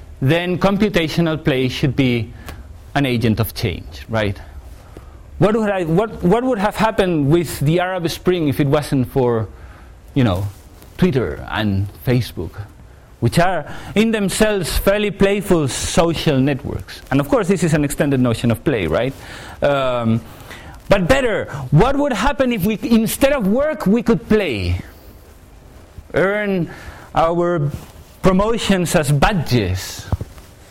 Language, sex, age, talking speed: English, male, 40-59, 135 wpm